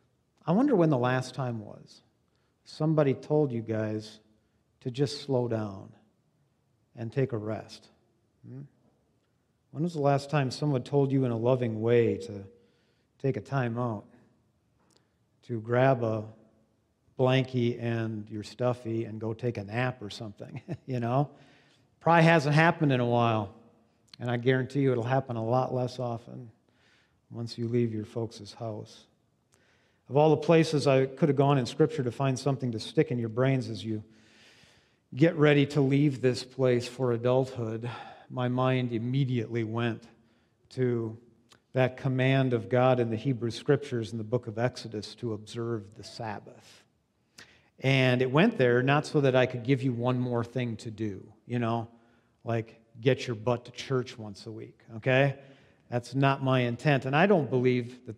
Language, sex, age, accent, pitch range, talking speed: English, male, 50-69, American, 115-135 Hz, 165 wpm